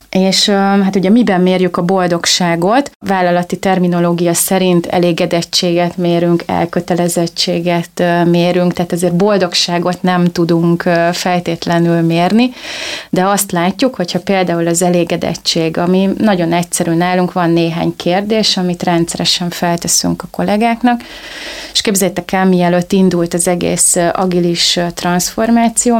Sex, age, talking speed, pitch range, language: female, 30-49, 115 wpm, 170-190 Hz, Hungarian